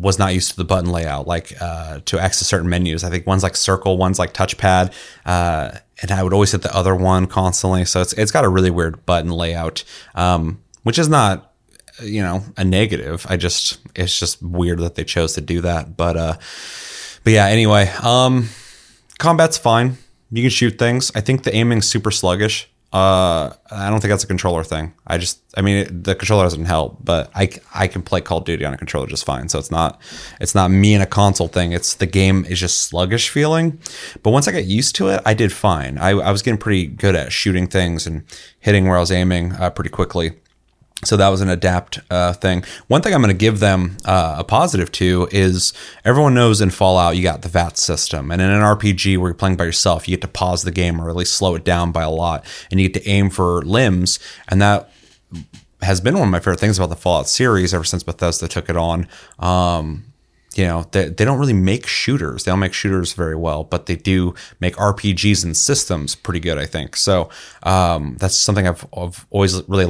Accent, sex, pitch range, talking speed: American, male, 85-100 Hz, 225 wpm